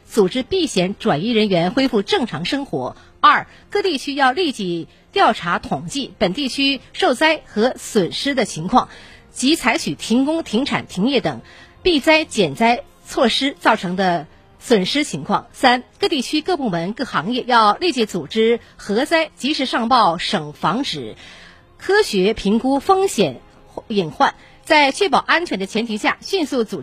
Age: 50-69